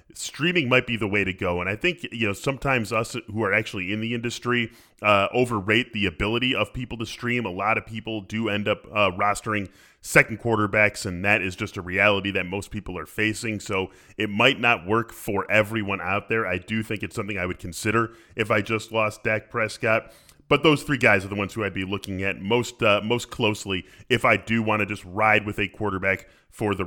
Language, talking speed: English, 225 wpm